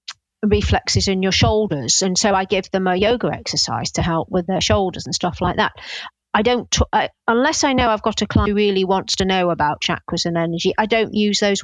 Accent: British